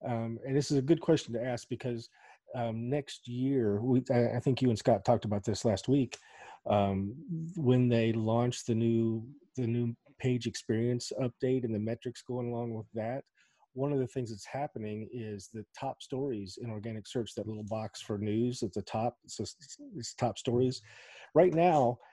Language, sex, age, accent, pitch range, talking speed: English, male, 40-59, American, 105-125 Hz, 190 wpm